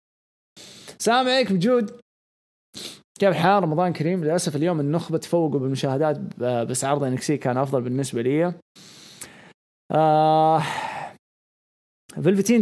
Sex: male